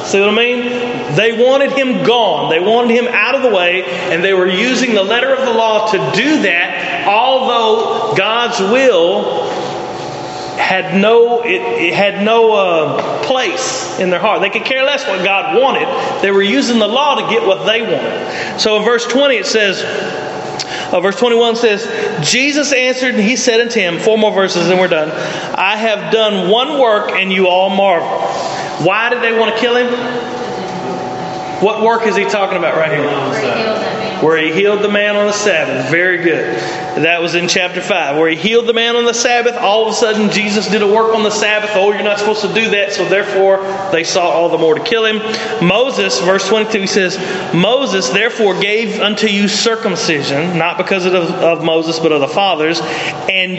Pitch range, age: 185-235 Hz, 40-59